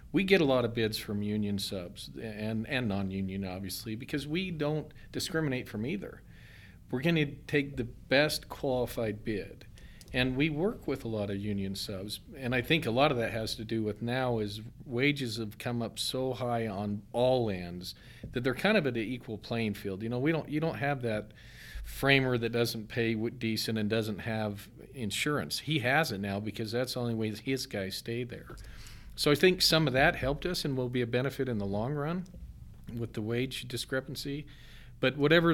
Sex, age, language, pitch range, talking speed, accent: male, 40-59, English, 105-135 Hz, 205 wpm, American